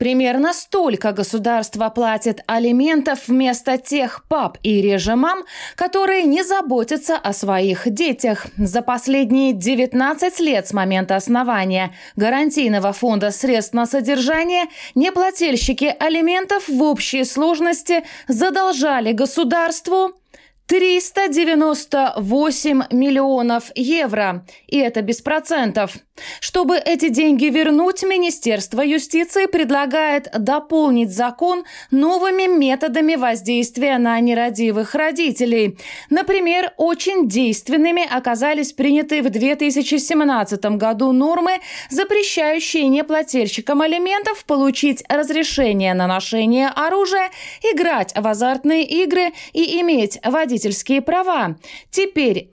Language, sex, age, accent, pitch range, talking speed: Russian, female, 20-39, native, 240-330 Hz, 95 wpm